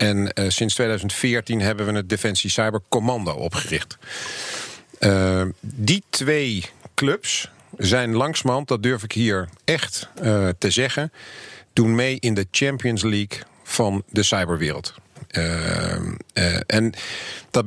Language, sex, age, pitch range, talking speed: Dutch, male, 50-69, 100-125 Hz, 130 wpm